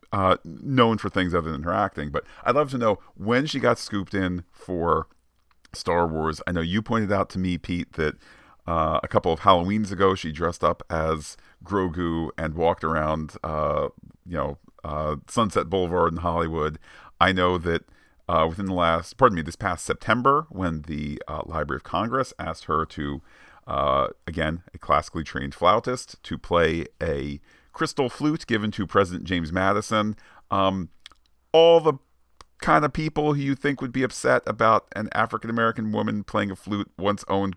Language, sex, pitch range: English, male, 85-110 Hz